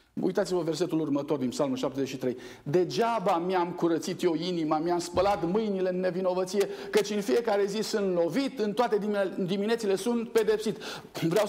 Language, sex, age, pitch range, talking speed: Romanian, male, 50-69, 180-250 Hz, 145 wpm